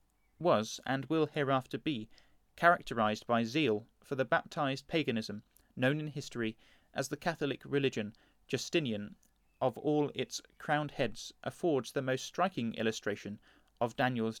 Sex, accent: male, British